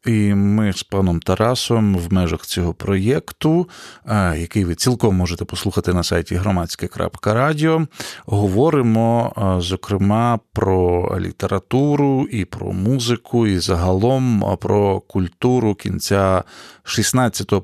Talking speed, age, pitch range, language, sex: 100 wpm, 40-59, 100-125 Hz, Ukrainian, male